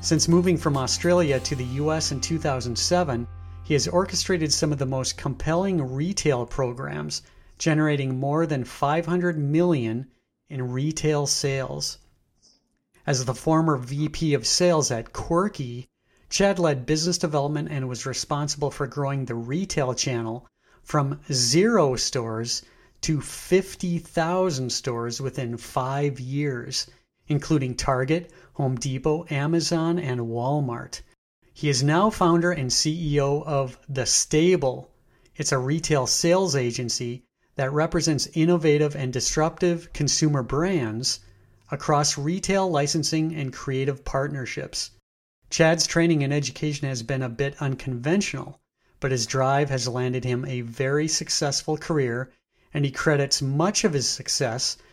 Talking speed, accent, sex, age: 125 wpm, American, male, 40-59